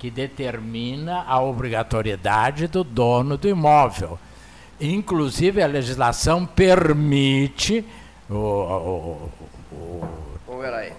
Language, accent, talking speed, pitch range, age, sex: Portuguese, Brazilian, 80 wpm, 110-170 Hz, 60-79, male